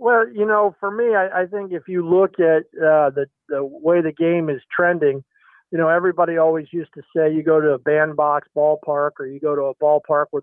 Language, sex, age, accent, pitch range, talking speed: English, male, 50-69, American, 150-175 Hz, 230 wpm